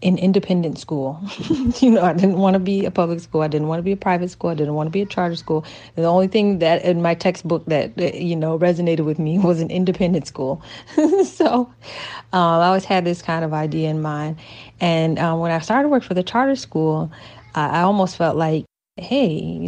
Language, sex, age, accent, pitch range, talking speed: English, female, 30-49, American, 155-185 Hz, 225 wpm